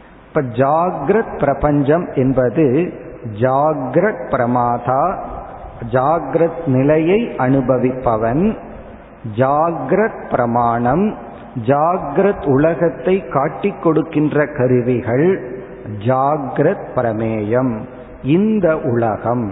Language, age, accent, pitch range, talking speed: Tamil, 50-69, native, 125-165 Hz, 60 wpm